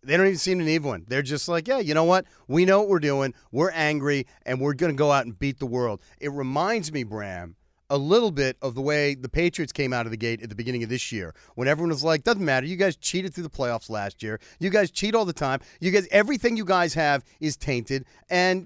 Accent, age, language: American, 40-59, English